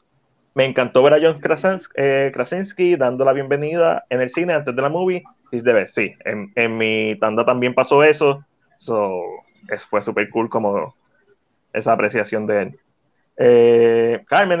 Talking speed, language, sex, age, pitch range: 150 wpm, Spanish, male, 20-39, 115-150 Hz